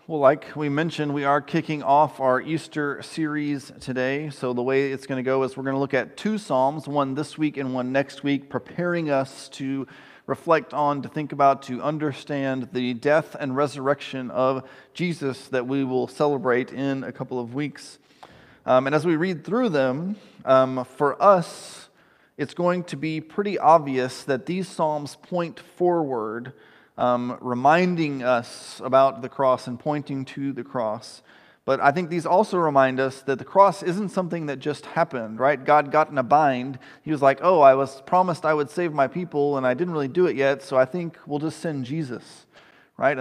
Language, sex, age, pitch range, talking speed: English, male, 40-59, 130-155 Hz, 195 wpm